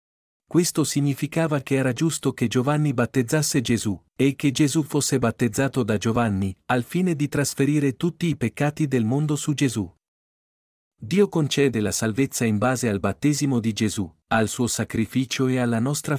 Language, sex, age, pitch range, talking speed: Italian, male, 50-69, 110-145 Hz, 160 wpm